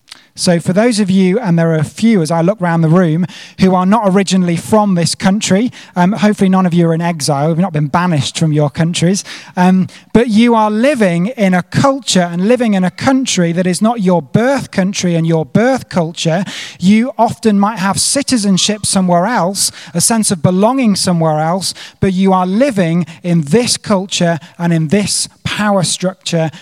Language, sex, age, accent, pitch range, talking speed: English, male, 30-49, British, 165-210 Hz, 195 wpm